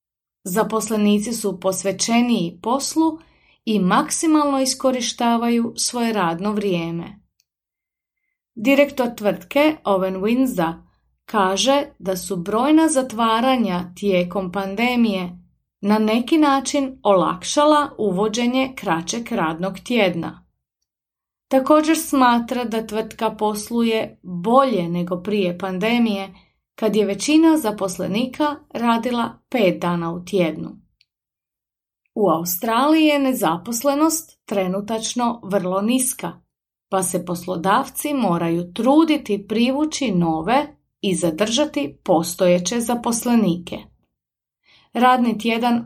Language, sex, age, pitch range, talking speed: Croatian, female, 30-49, 190-260 Hz, 90 wpm